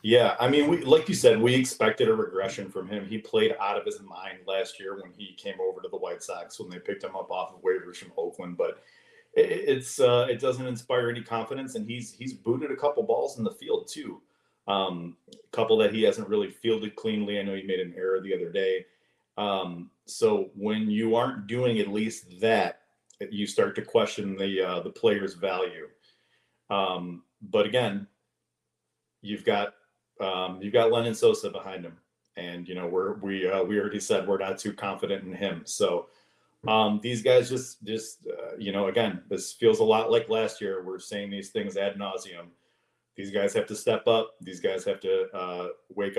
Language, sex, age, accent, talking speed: English, male, 40-59, American, 205 wpm